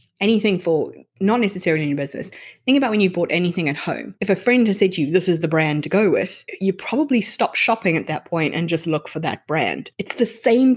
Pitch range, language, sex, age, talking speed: 165-205 Hz, English, female, 20-39, 250 wpm